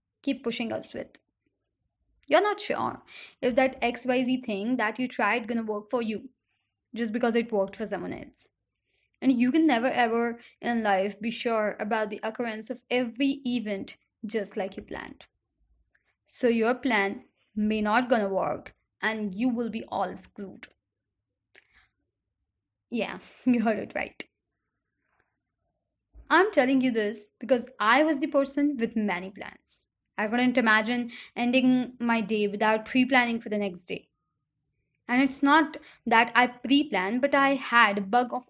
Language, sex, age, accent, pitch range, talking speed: Hindi, female, 20-39, native, 220-275 Hz, 155 wpm